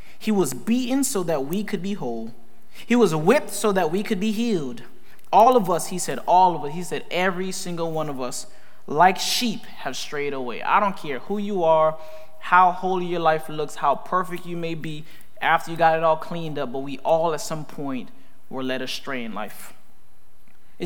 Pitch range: 155-200 Hz